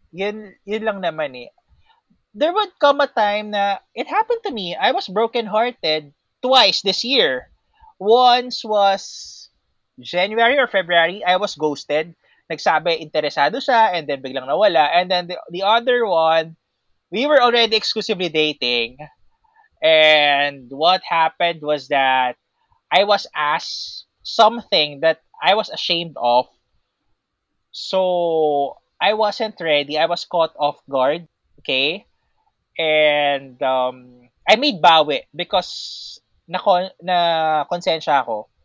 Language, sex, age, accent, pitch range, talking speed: Filipino, male, 20-39, native, 150-220 Hz, 125 wpm